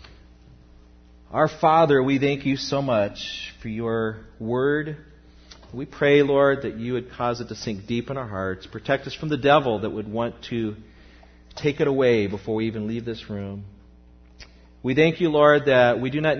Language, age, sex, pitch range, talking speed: English, 40-59, male, 95-125 Hz, 185 wpm